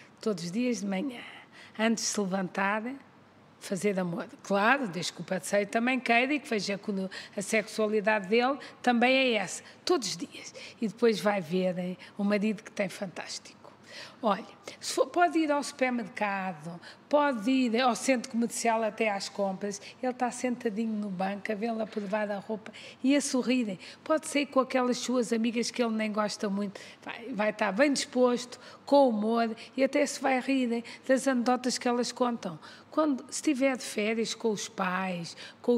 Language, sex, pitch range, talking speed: Portuguese, female, 205-255 Hz, 170 wpm